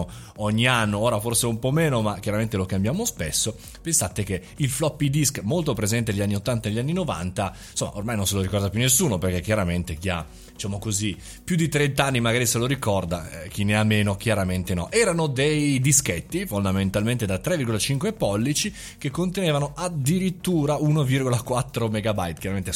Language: Italian